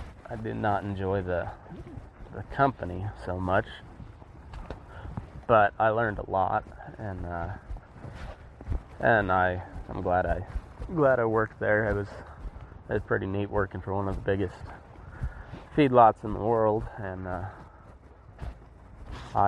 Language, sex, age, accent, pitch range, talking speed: English, male, 20-39, American, 85-105 Hz, 130 wpm